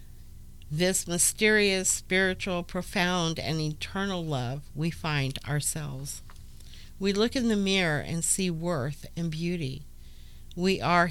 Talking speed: 120 wpm